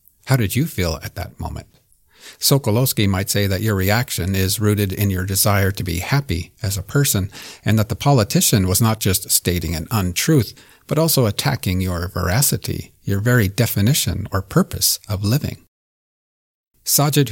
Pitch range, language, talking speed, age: 95-125 Hz, English, 165 wpm, 50-69